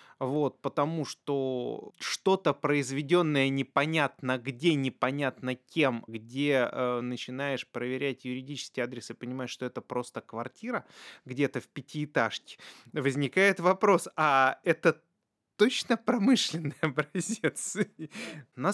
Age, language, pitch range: 20-39, Russian, 120-155 Hz